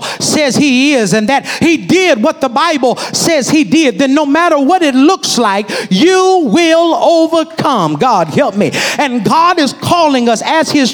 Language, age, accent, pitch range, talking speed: English, 50-69, American, 230-315 Hz, 180 wpm